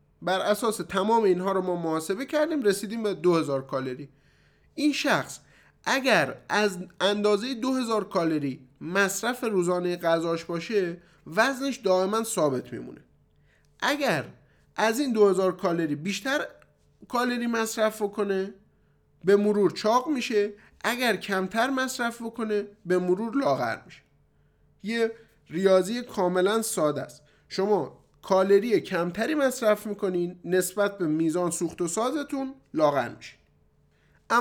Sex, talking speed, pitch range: male, 115 wpm, 175-225 Hz